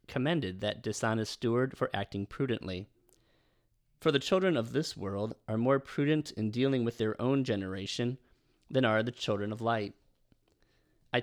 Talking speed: 155 wpm